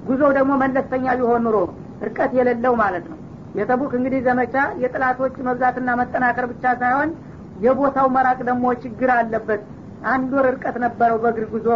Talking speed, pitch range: 140 wpm, 245-265 Hz